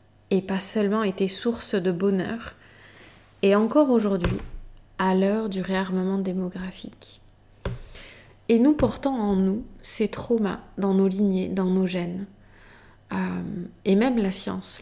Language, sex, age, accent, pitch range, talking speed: French, female, 20-39, French, 175-210 Hz, 135 wpm